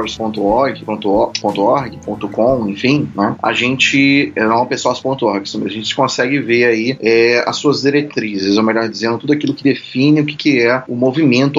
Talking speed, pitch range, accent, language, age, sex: 175 wpm, 110-145 Hz, Brazilian, Portuguese, 20-39, male